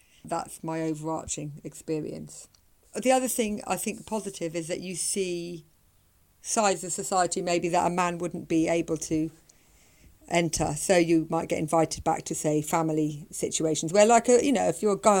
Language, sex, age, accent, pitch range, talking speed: English, female, 50-69, British, 160-200 Hz, 175 wpm